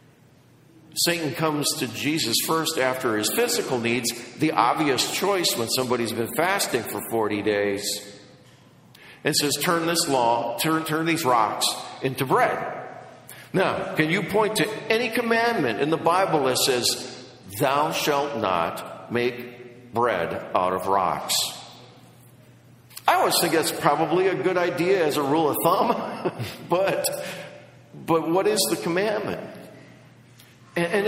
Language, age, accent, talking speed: English, 50-69, American, 135 wpm